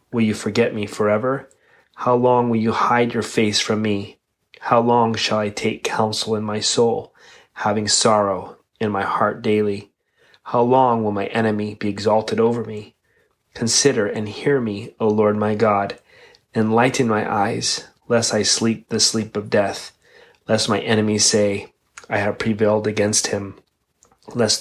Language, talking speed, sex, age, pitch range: English, 160 wpm, male, 30-49, 105-115 Hz